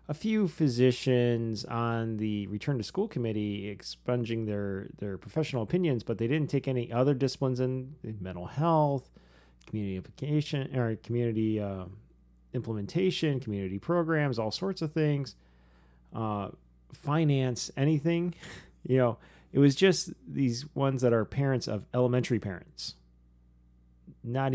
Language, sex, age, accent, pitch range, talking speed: English, male, 30-49, American, 95-135 Hz, 130 wpm